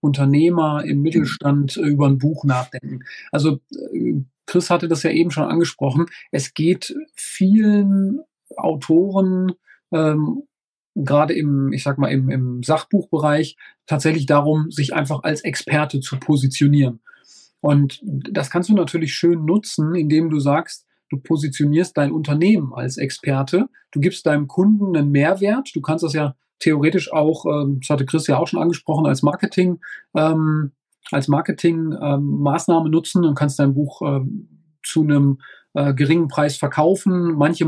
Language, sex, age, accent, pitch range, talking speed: German, male, 40-59, German, 140-165 Hz, 135 wpm